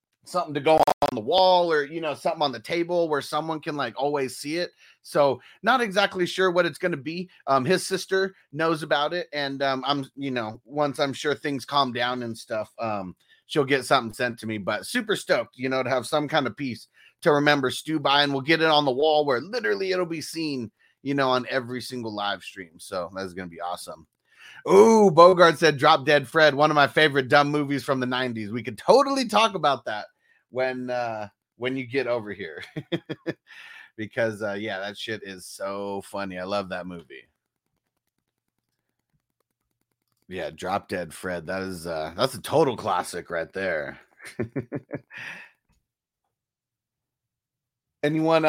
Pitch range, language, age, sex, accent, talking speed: 120-155 Hz, English, 30-49, male, American, 185 wpm